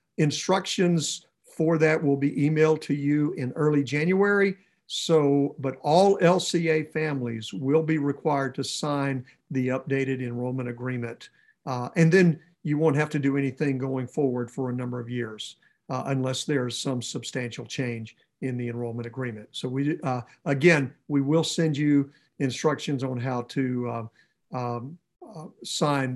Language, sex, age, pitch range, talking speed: English, male, 50-69, 130-165 Hz, 155 wpm